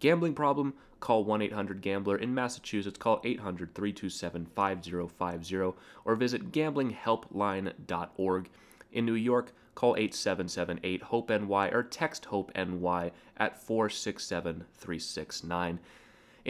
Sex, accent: male, American